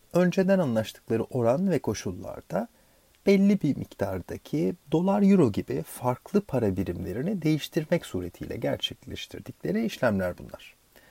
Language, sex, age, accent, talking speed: Turkish, male, 40-59, native, 95 wpm